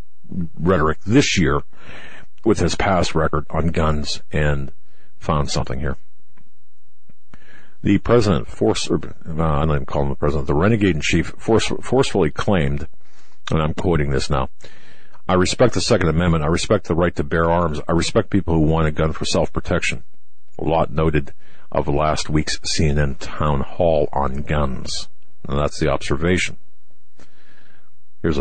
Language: English